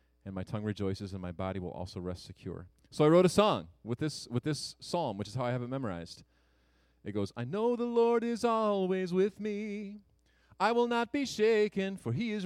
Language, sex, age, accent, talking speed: English, male, 40-59, American, 220 wpm